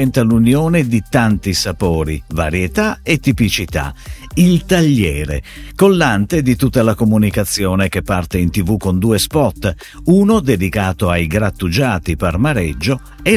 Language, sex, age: Italian, male, 50-69